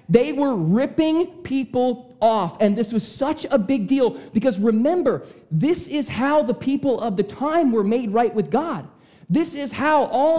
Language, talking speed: English, 180 wpm